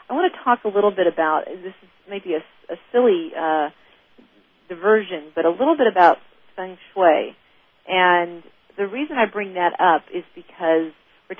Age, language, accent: 40-59, English, American